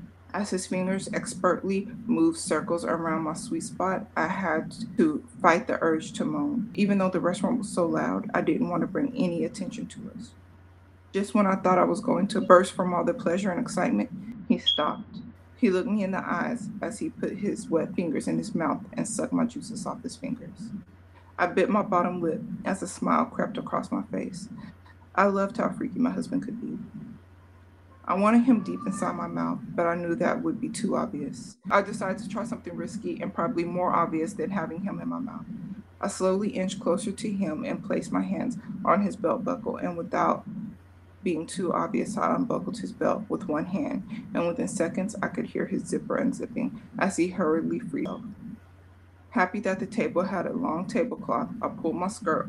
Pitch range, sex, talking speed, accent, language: 175-225 Hz, female, 200 wpm, American, English